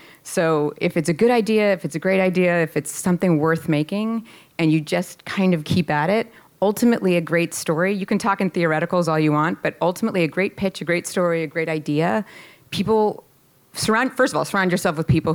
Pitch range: 155-190 Hz